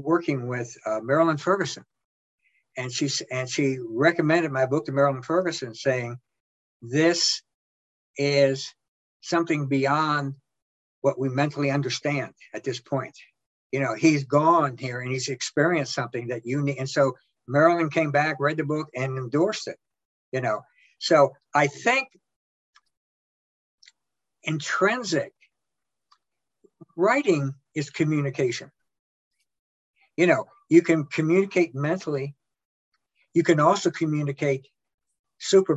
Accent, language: American, English